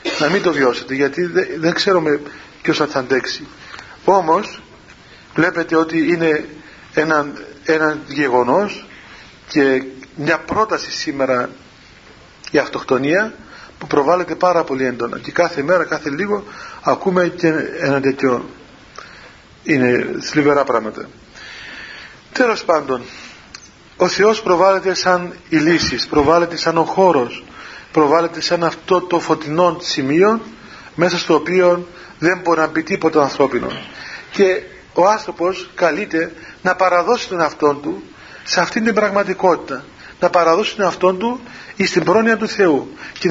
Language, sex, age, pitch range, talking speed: Greek, male, 40-59, 150-190 Hz, 125 wpm